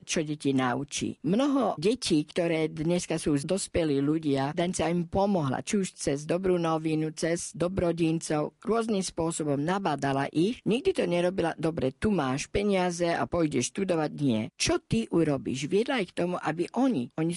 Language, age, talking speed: Slovak, 50-69, 160 wpm